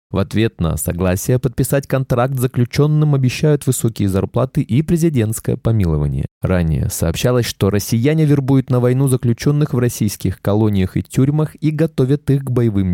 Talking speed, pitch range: 145 wpm, 100-140 Hz